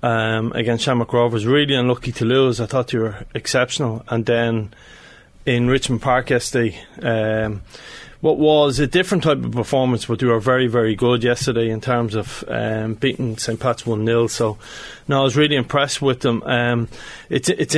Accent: Irish